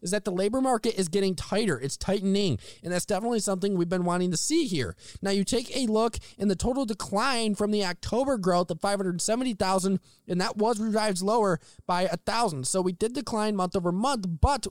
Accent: American